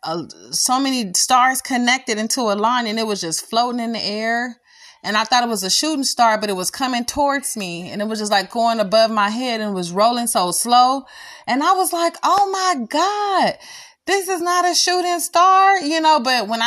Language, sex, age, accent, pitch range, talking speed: English, female, 30-49, American, 195-270 Hz, 215 wpm